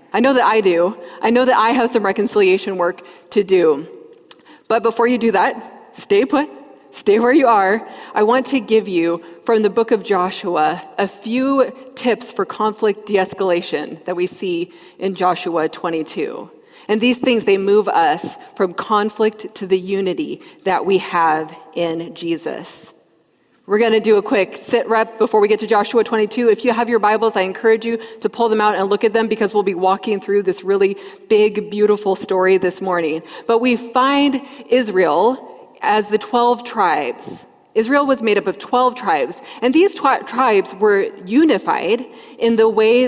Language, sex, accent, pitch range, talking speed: English, female, American, 190-240 Hz, 180 wpm